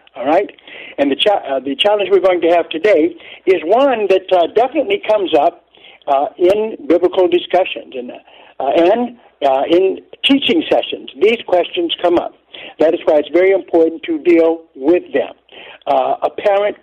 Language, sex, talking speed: English, male, 170 wpm